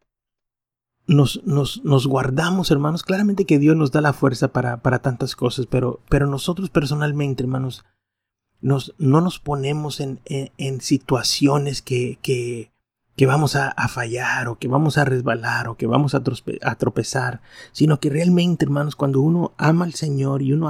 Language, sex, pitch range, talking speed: Spanish, male, 130-150 Hz, 155 wpm